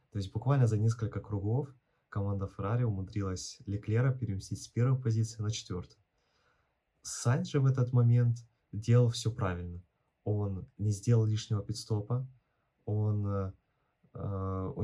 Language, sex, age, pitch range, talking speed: Ukrainian, male, 20-39, 100-120 Hz, 125 wpm